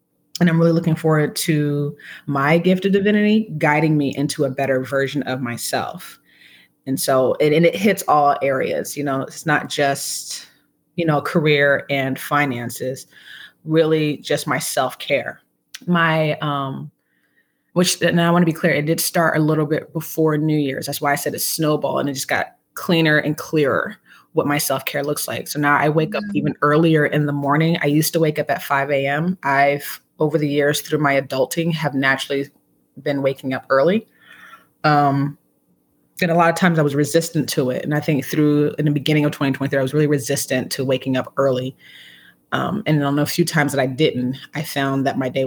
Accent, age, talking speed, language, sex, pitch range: American, 20-39, 195 wpm, English, female, 135-155 Hz